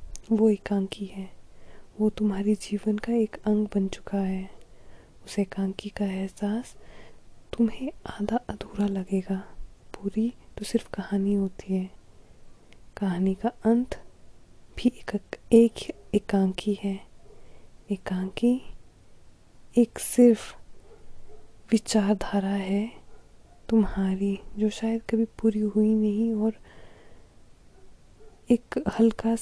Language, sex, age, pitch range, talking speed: Hindi, female, 20-39, 195-225 Hz, 100 wpm